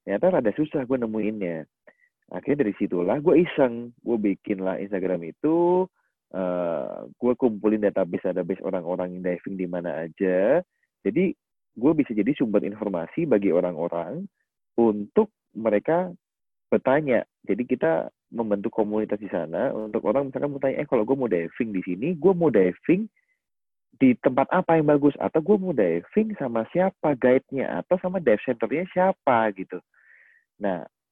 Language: Indonesian